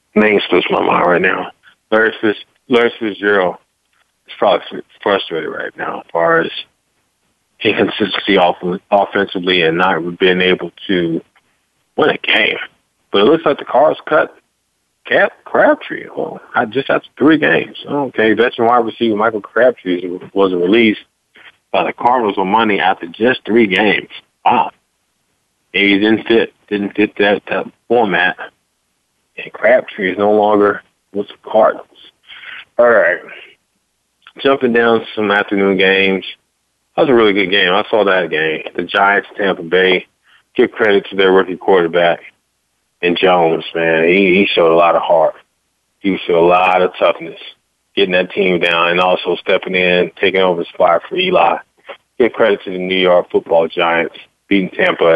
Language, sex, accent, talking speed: English, male, American, 160 wpm